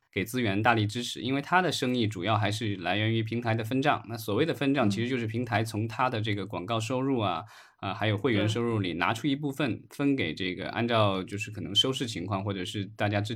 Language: Chinese